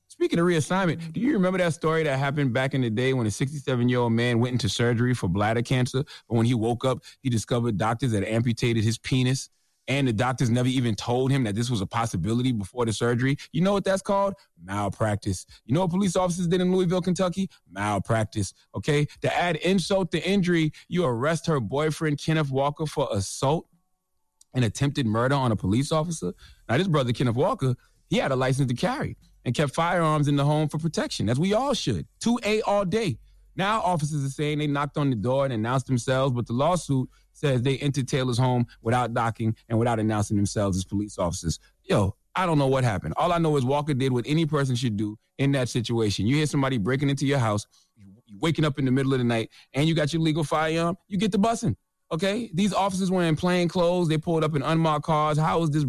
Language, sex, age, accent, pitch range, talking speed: English, male, 30-49, American, 115-160 Hz, 220 wpm